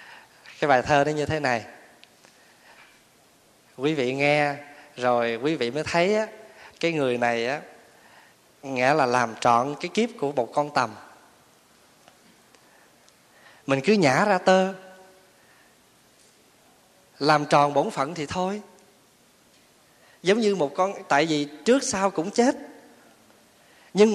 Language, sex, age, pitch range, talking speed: Vietnamese, male, 20-39, 140-200 Hz, 130 wpm